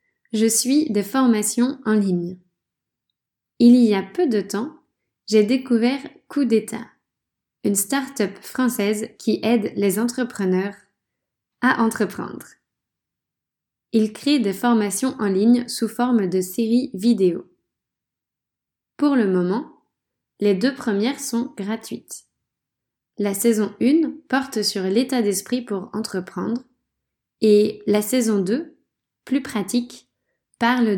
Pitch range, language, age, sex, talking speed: 205-250 Hz, French, 10-29, female, 115 wpm